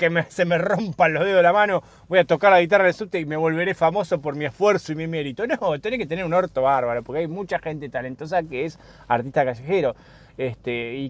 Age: 20-39